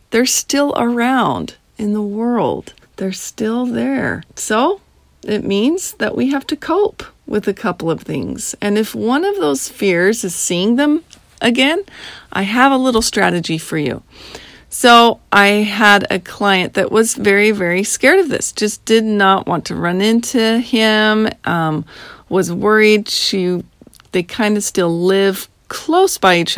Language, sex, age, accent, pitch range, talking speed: English, female, 40-59, American, 190-235 Hz, 160 wpm